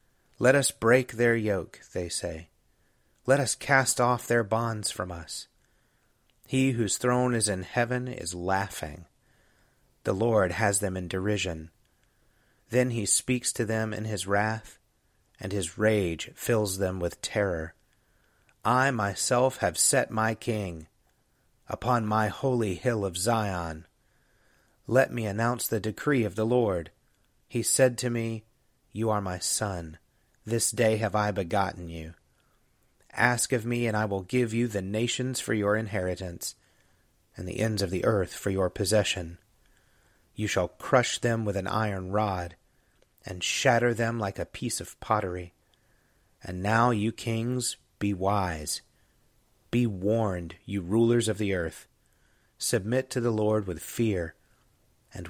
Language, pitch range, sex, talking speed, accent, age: English, 95-120 Hz, male, 150 wpm, American, 30-49